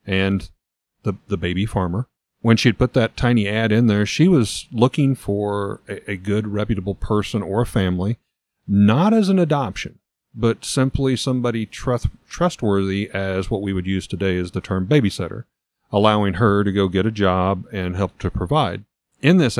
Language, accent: English, American